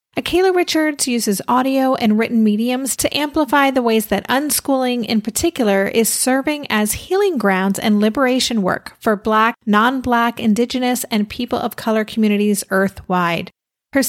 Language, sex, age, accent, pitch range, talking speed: English, female, 30-49, American, 200-255 Hz, 145 wpm